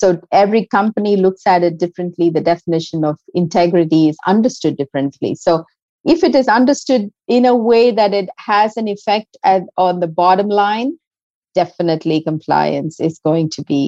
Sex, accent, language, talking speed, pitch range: female, Indian, English, 160 wpm, 155-200 Hz